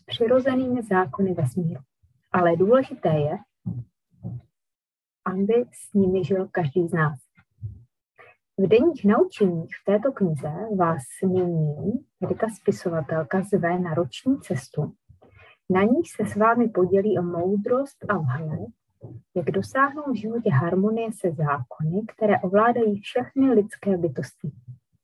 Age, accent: 30-49, native